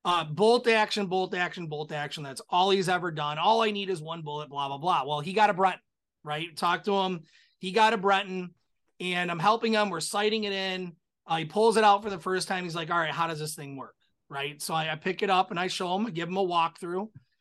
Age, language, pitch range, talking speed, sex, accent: 30-49, English, 165-200 Hz, 260 wpm, male, American